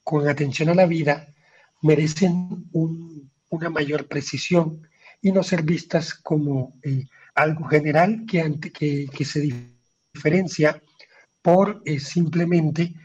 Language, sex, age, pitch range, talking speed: Spanish, male, 50-69, 145-165 Hz, 125 wpm